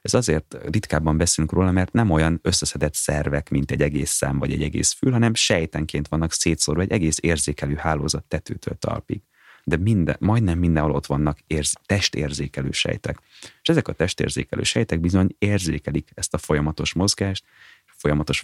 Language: Hungarian